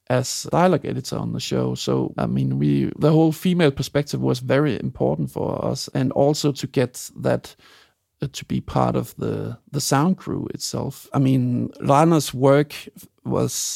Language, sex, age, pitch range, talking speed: English, male, 50-69, 120-145 Hz, 175 wpm